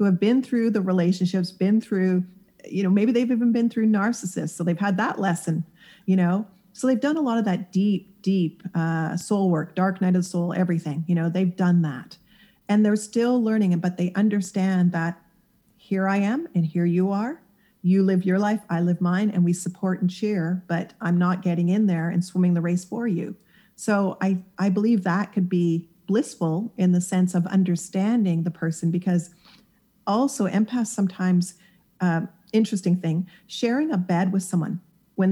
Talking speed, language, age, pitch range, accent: 195 wpm, English, 40-59, 175-205 Hz, American